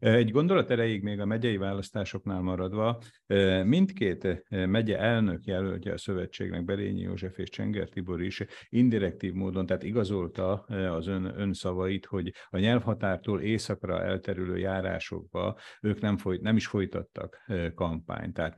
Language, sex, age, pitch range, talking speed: Hungarian, male, 50-69, 90-105 Hz, 130 wpm